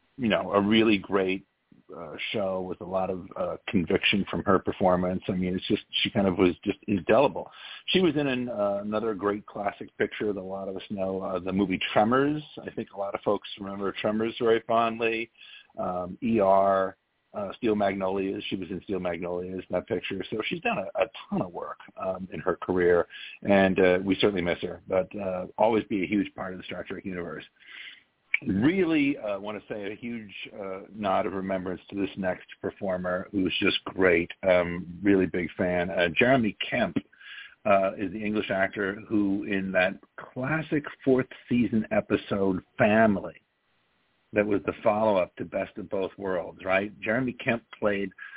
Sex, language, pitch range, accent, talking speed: male, English, 95-110 Hz, American, 185 wpm